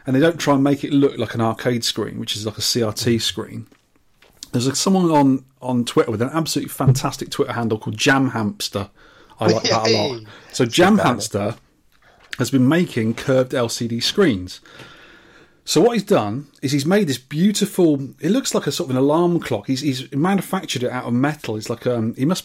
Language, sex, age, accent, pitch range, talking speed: English, male, 30-49, British, 120-150 Hz, 205 wpm